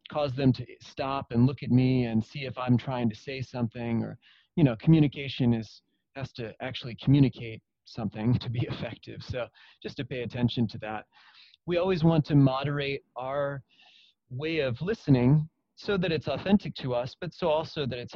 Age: 30-49